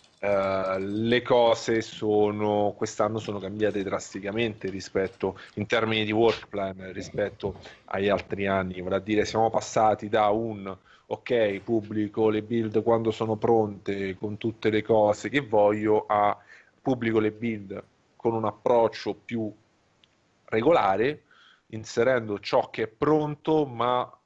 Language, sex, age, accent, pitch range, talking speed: Italian, male, 30-49, native, 100-110 Hz, 125 wpm